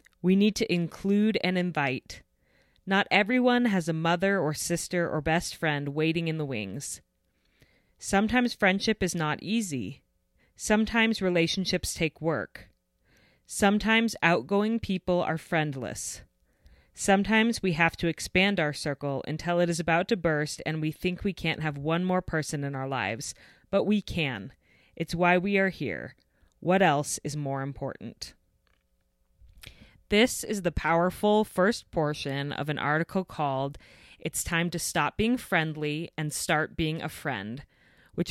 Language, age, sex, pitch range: English, 30-49, female, 150-190 Hz